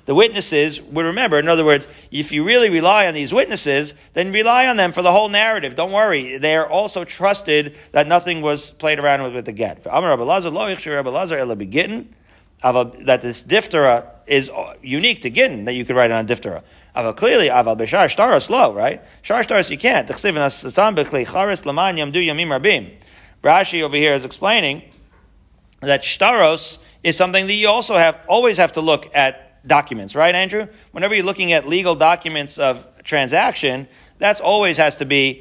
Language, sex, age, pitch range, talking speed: English, male, 40-59, 140-180 Hz, 145 wpm